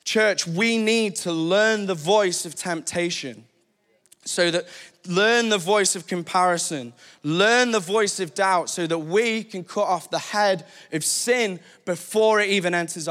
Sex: male